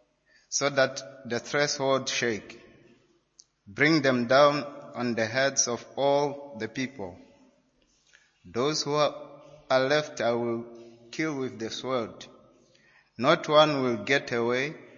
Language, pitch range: English, 120-150 Hz